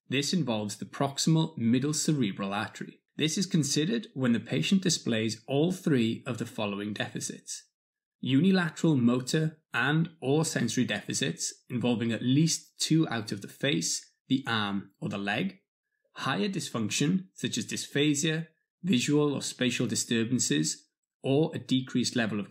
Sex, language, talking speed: male, English, 140 wpm